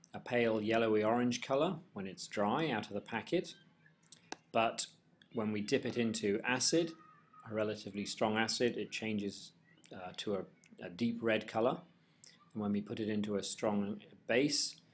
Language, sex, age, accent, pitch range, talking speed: English, male, 40-59, British, 100-125 Hz, 165 wpm